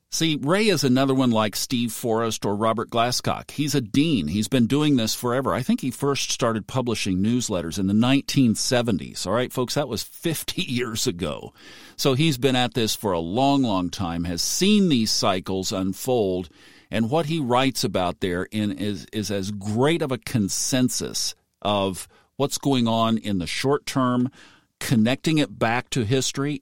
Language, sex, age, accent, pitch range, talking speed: English, male, 50-69, American, 105-135 Hz, 175 wpm